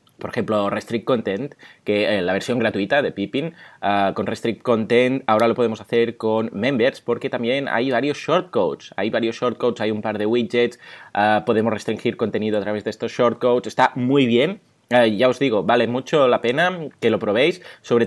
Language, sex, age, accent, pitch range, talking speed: Spanish, male, 20-39, Spanish, 105-135 Hz, 195 wpm